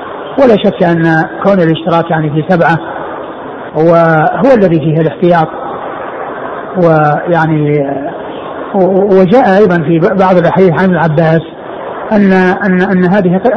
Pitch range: 160-190 Hz